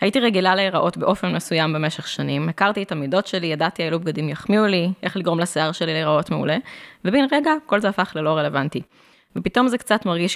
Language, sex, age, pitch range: Hebrew, female, 20-39, 155-200 Hz